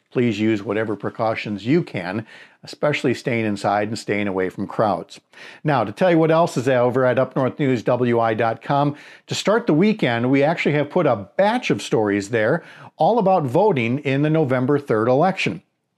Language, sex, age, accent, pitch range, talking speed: English, male, 50-69, American, 115-160 Hz, 170 wpm